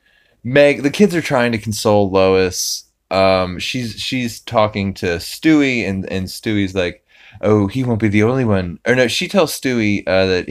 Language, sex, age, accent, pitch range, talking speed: English, male, 20-39, American, 95-120 Hz, 185 wpm